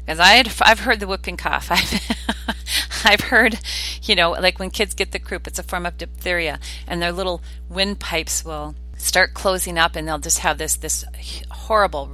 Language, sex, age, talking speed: English, female, 40-59, 190 wpm